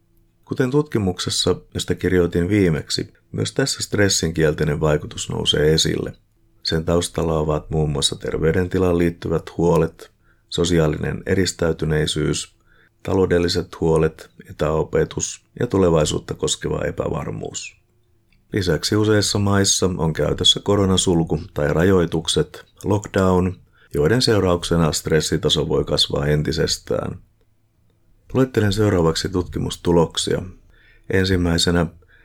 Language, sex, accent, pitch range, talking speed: Finnish, male, native, 80-105 Hz, 90 wpm